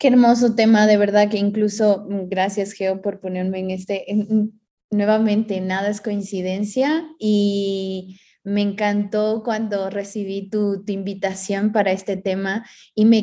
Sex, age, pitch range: female, 20-39, 190-215 Hz